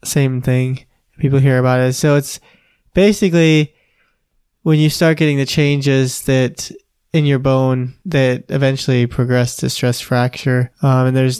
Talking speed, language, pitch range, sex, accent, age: 145 wpm, English, 125-145 Hz, male, American, 20-39